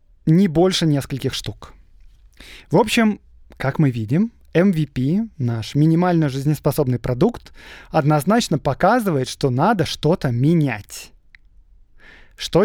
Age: 20-39